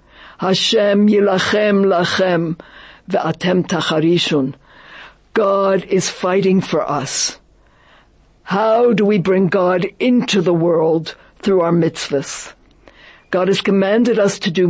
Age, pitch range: 60-79, 175-205 Hz